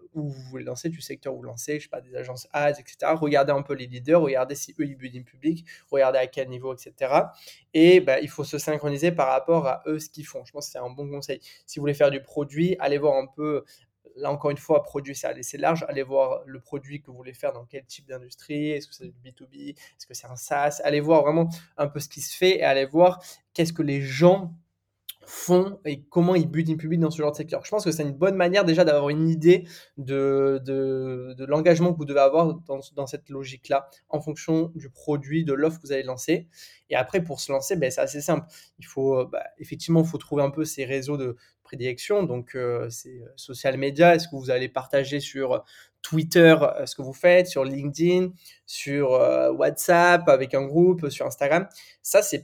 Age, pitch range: 20-39, 135-160 Hz